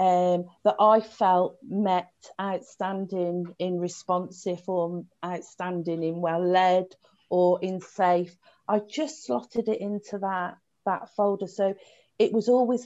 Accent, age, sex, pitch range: British, 40-59, female, 180-210 Hz